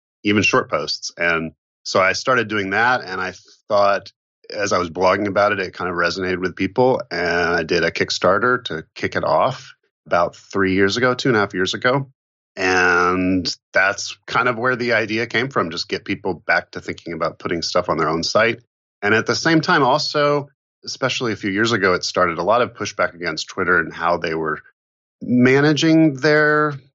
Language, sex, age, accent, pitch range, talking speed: English, male, 30-49, American, 85-125 Hz, 200 wpm